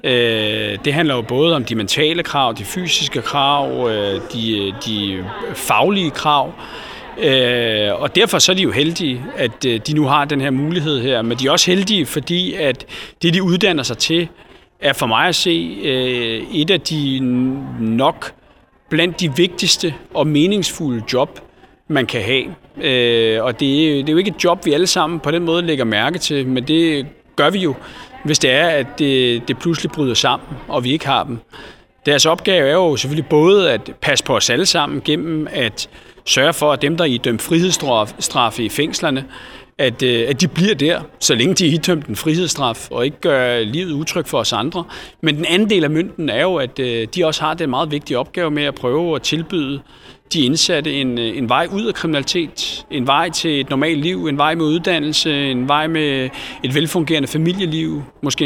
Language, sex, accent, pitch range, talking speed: Danish, male, native, 130-165 Hz, 190 wpm